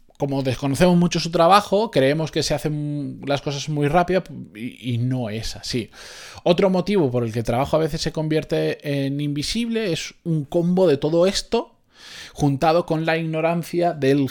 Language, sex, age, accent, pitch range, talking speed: Spanish, male, 20-39, Spanish, 125-160 Hz, 170 wpm